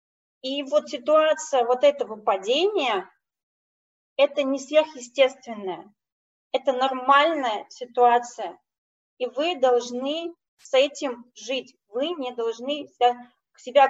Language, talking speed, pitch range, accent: Russian, 95 wpm, 235-285 Hz, native